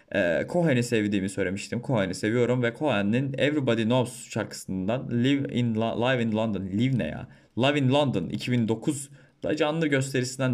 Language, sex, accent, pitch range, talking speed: Turkish, male, native, 105-150 Hz, 150 wpm